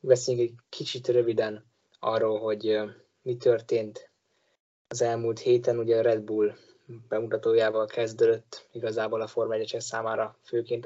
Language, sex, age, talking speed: Hungarian, male, 20-39, 125 wpm